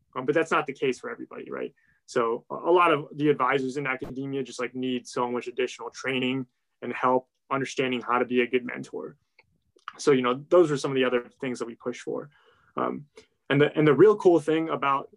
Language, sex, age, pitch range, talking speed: English, male, 20-39, 125-145 Hz, 220 wpm